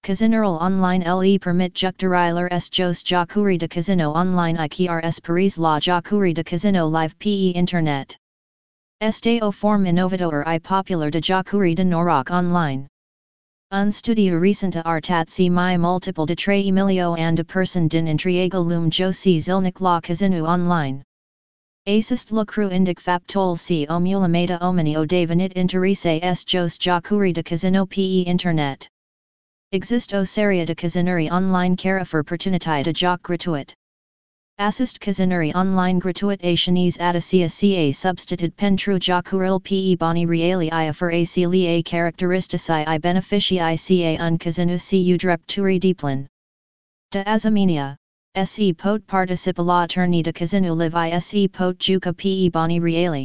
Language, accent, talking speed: Romanian, American, 150 wpm